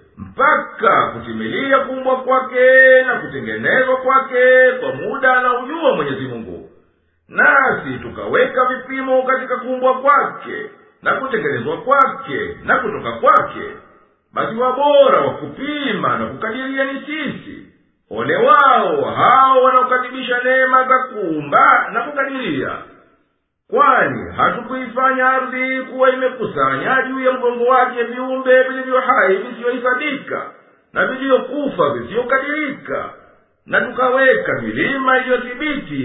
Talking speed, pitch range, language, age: 100 wpm, 250-275 Hz, Swahili, 50-69